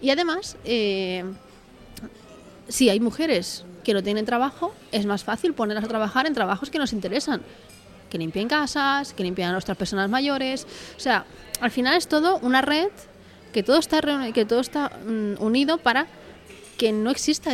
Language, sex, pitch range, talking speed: Spanish, female, 210-270 Hz, 175 wpm